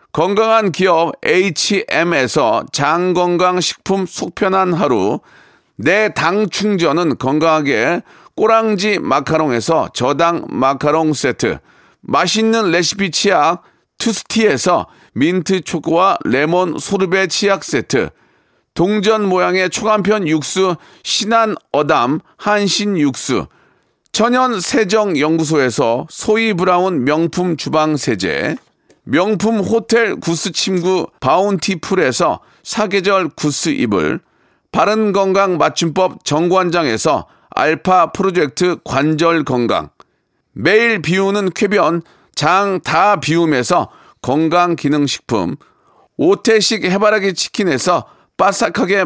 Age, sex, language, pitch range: 40-59, male, Korean, 165-210 Hz